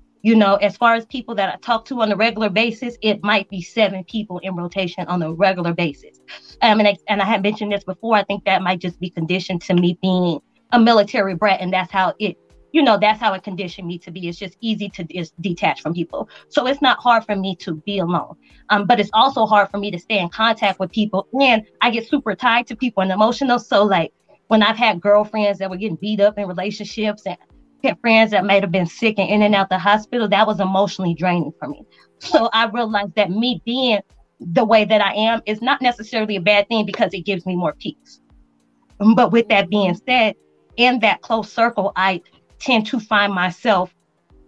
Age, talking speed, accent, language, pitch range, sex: 20-39, 230 wpm, American, English, 185-220 Hz, female